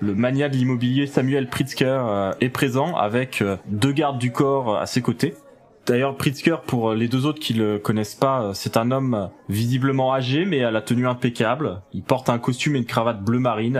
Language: French